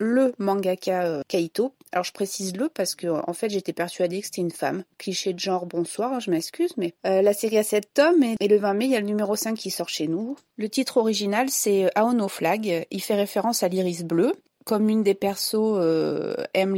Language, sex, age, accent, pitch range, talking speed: French, female, 30-49, French, 180-225 Hz, 235 wpm